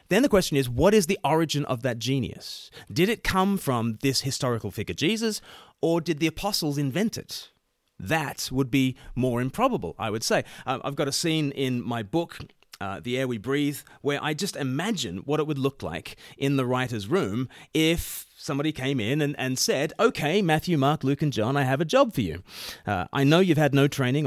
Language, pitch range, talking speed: English, 115-155 Hz, 210 wpm